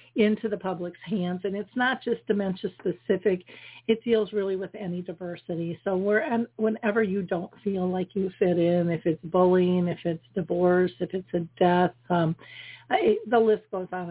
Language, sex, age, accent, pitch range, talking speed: English, female, 50-69, American, 180-215 Hz, 185 wpm